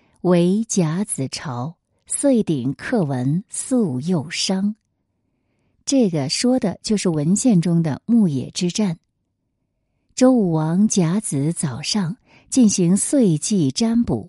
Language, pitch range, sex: Chinese, 150-215 Hz, female